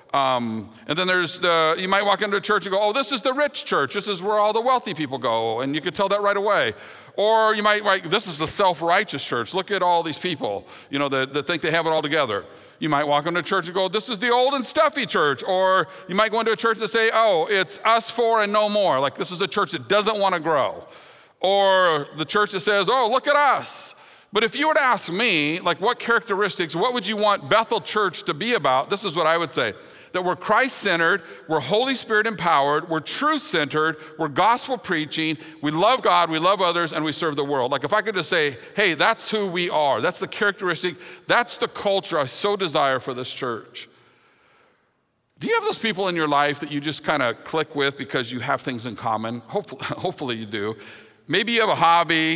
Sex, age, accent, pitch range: male, 50-69, American, 155-215 Hz